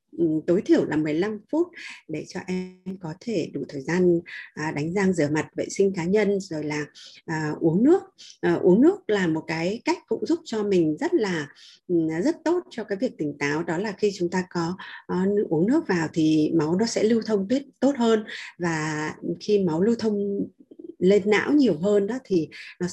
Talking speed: 195 wpm